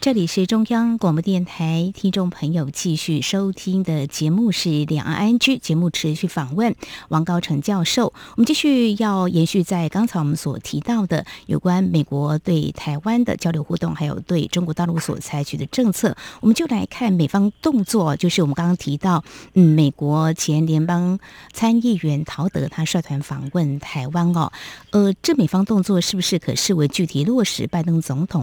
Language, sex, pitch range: English, female, 155-200 Hz